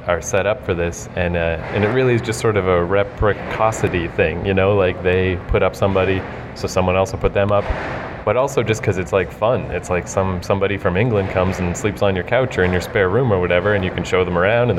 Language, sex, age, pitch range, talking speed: English, male, 30-49, 90-110 Hz, 260 wpm